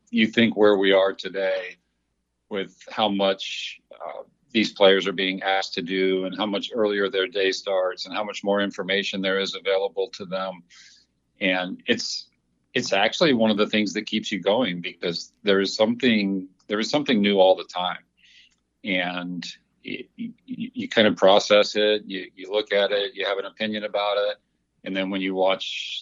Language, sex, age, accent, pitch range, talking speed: English, male, 50-69, American, 90-105 Hz, 185 wpm